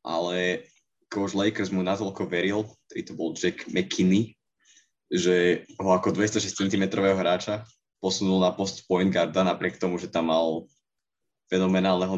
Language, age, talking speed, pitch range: Slovak, 20-39, 140 wpm, 85-95 Hz